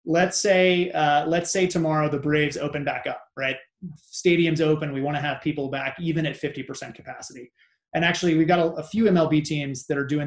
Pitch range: 140-170 Hz